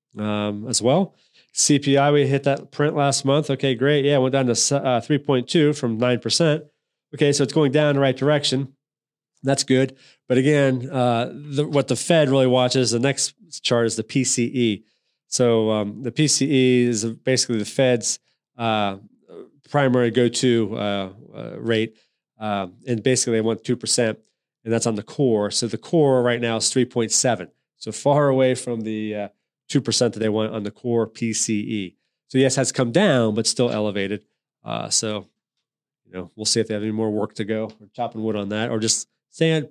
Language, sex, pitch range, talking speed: English, male, 110-135 Hz, 190 wpm